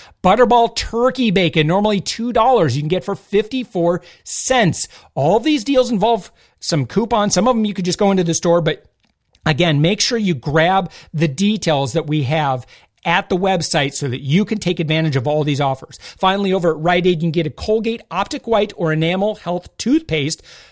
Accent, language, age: American, English, 40-59